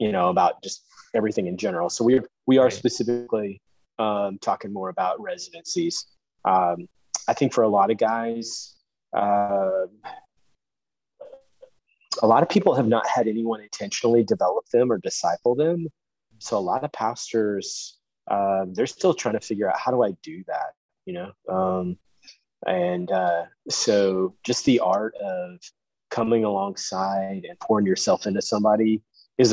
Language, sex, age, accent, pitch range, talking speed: English, male, 30-49, American, 100-130 Hz, 155 wpm